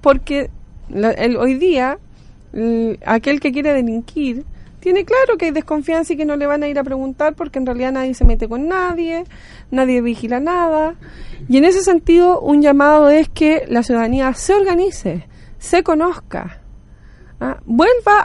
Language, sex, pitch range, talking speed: Spanish, female, 245-335 Hz, 170 wpm